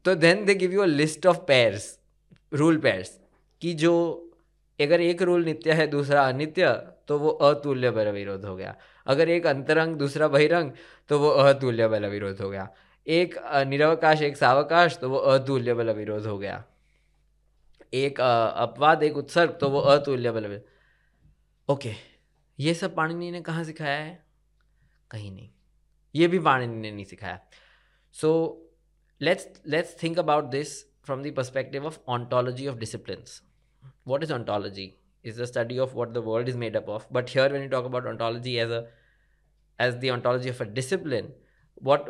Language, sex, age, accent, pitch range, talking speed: Hindi, male, 20-39, native, 120-155 Hz, 165 wpm